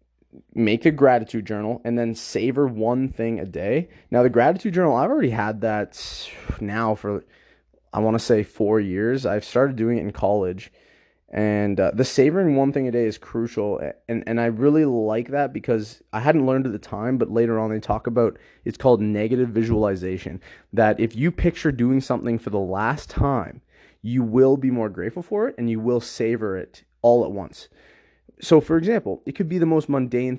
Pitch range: 110-135 Hz